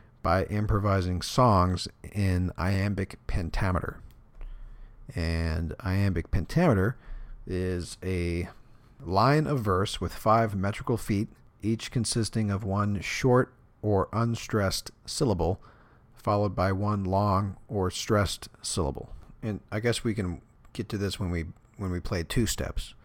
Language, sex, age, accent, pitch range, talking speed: English, male, 50-69, American, 90-105 Hz, 125 wpm